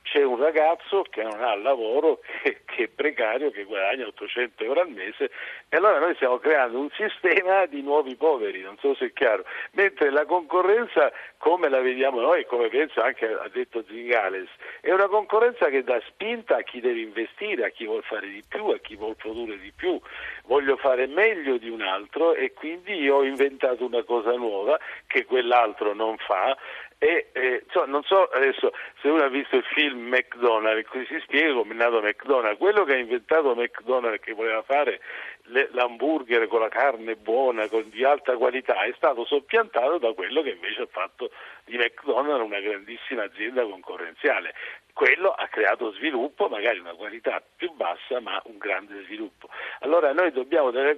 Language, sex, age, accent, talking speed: Italian, male, 50-69, native, 180 wpm